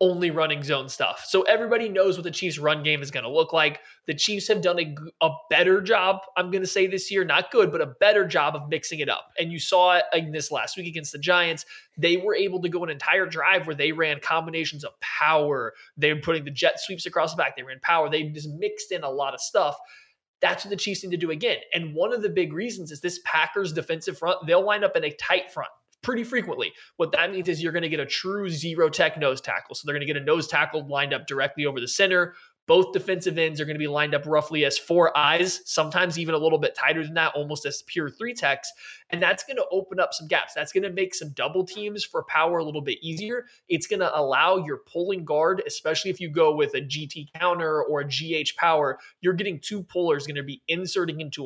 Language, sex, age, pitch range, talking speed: English, male, 20-39, 155-195 Hz, 250 wpm